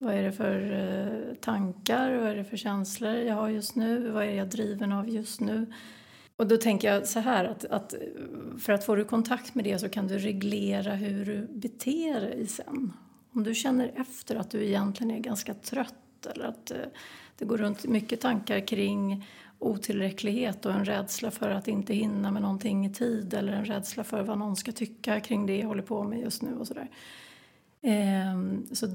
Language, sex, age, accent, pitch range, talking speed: Swedish, female, 30-49, native, 205-240 Hz, 195 wpm